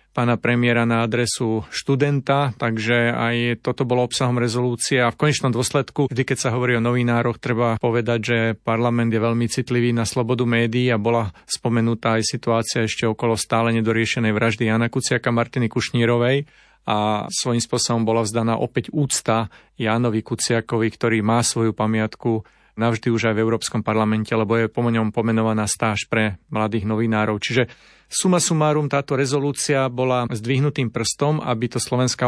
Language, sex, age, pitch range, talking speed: Slovak, male, 40-59, 115-130 Hz, 155 wpm